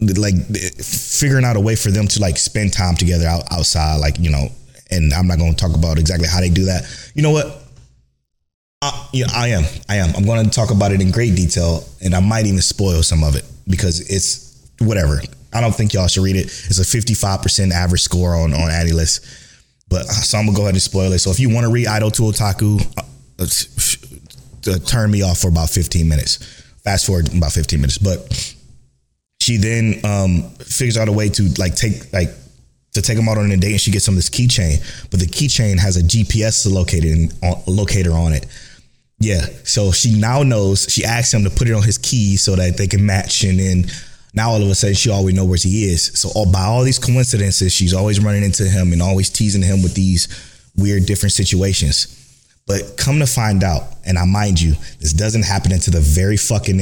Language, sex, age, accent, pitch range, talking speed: English, male, 20-39, American, 85-105 Hz, 220 wpm